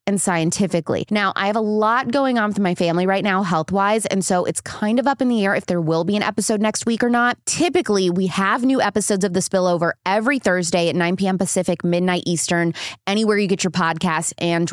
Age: 20-39